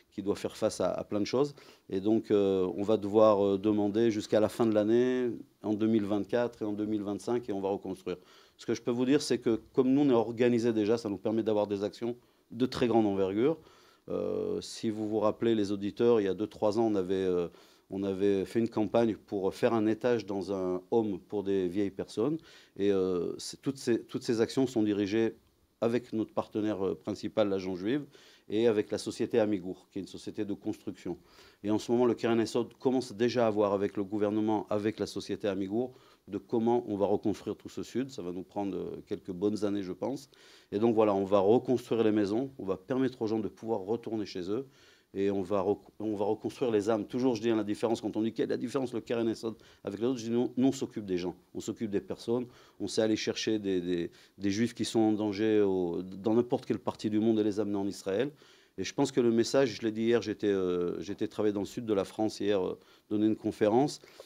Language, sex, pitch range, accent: French, male, 100-115 Hz, French